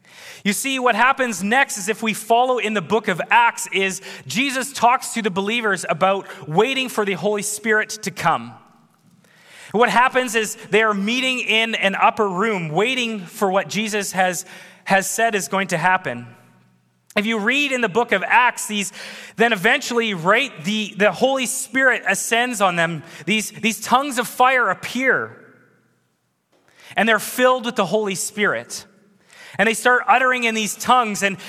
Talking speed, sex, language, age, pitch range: 170 wpm, male, English, 20-39, 195-245 Hz